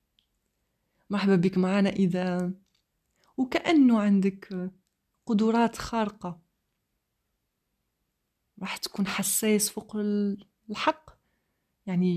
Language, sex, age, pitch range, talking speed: Arabic, female, 30-49, 175-215 Hz, 70 wpm